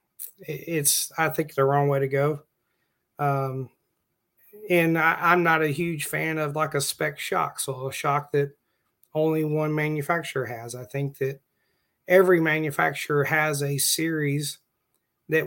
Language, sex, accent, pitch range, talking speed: English, male, American, 135-160 Hz, 145 wpm